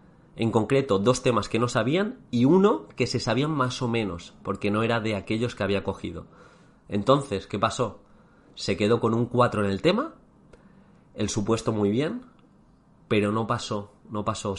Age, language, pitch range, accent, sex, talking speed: 30-49, Spanish, 100-130 Hz, Spanish, male, 180 wpm